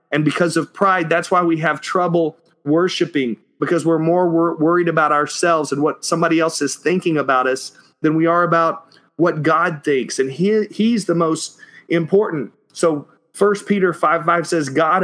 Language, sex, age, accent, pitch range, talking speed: English, male, 40-59, American, 150-180 Hz, 180 wpm